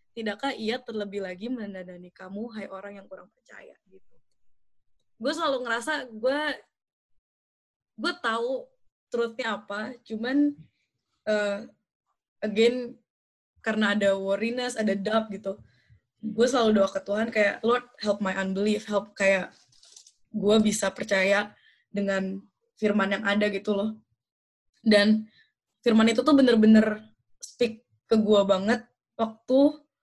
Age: 20-39